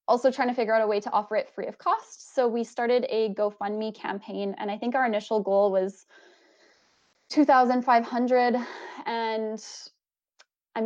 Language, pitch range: English, 200-255 Hz